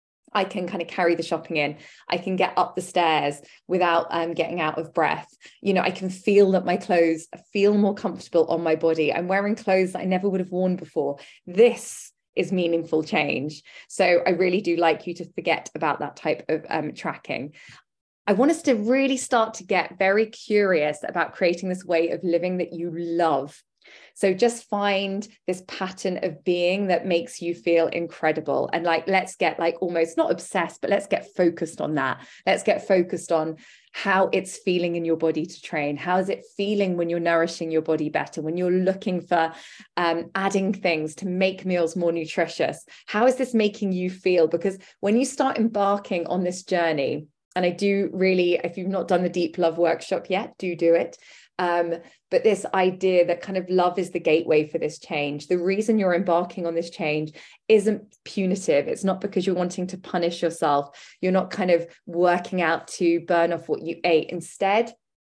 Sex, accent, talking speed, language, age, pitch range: female, British, 195 wpm, English, 20-39, 170-195 Hz